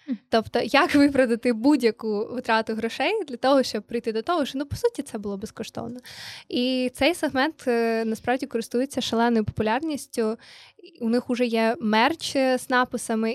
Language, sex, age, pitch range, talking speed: Ukrainian, female, 20-39, 225-260 Hz, 150 wpm